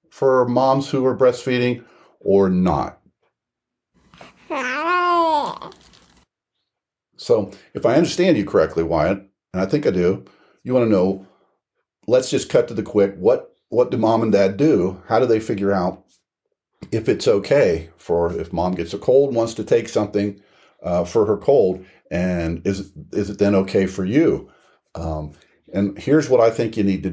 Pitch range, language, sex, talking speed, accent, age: 95-130 Hz, English, male, 165 wpm, American, 50-69